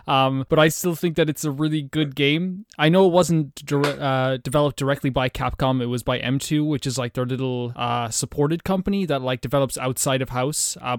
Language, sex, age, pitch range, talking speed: English, male, 20-39, 130-160 Hz, 215 wpm